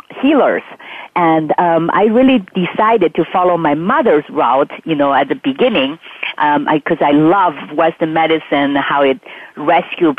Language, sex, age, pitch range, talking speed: English, female, 40-59, 160-195 Hz, 155 wpm